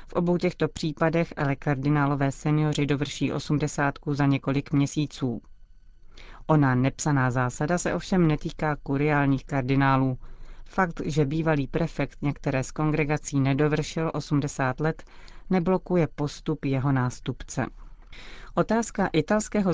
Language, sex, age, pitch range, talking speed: Czech, female, 30-49, 135-160 Hz, 110 wpm